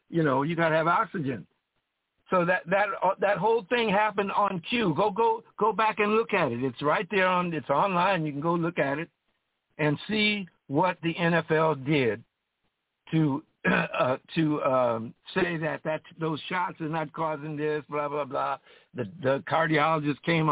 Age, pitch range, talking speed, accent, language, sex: 60-79, 140-170 Hz, 180 wpm, American, English, male